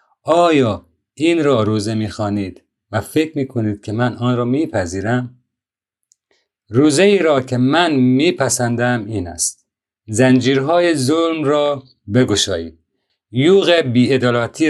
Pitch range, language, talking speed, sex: 110-135 Hz, Persian, 125 wpm, male